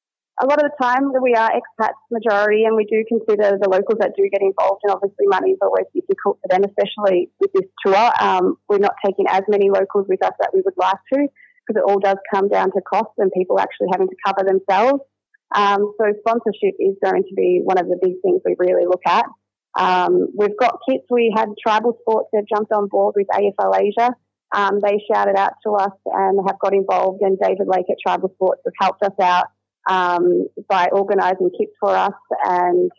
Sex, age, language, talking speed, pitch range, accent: female, 30-49, English, 215 wpm, 190-220 Hz, Australian